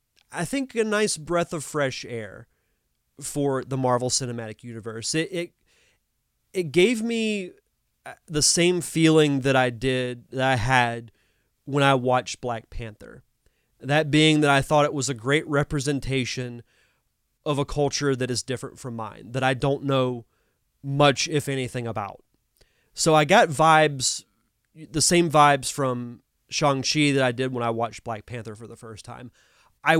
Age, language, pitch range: 30-49, English, 120-155 Hz